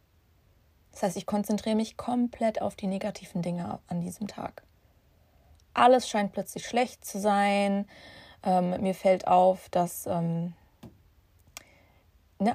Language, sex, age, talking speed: German, female, 20-39, 125 wpm